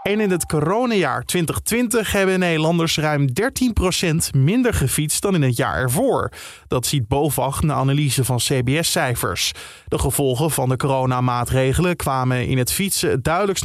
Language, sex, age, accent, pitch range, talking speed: Dutch, male, 20-39, Dutch, 130-175 Hz, 145 wpm